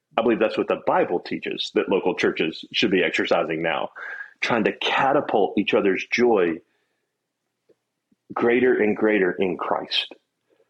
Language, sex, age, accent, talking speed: English, male, 40-59, American, 140 wpm